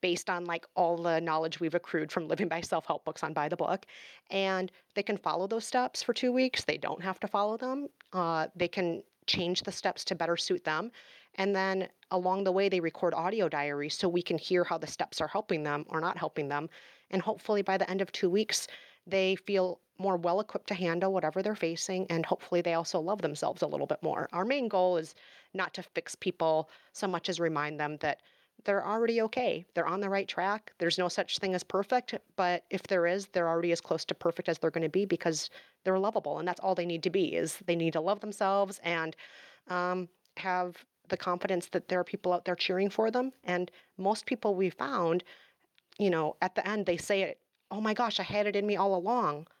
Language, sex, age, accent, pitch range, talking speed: English, female, 30-49, American, 170-200 Hz, 225 wpm